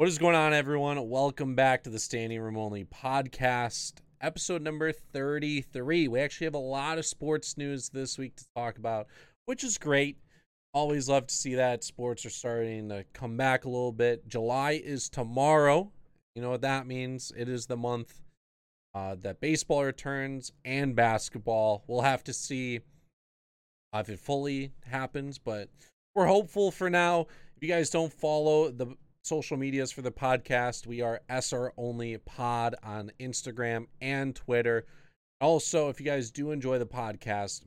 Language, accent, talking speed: English, American, 170 wpm